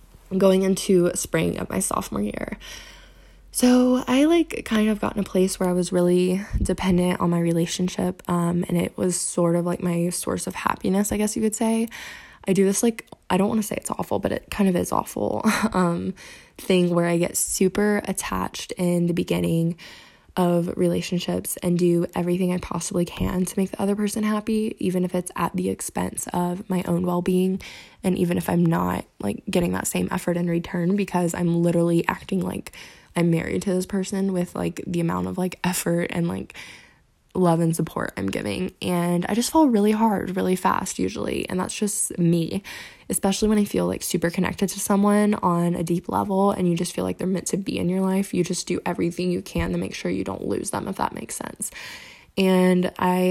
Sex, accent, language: female, American, English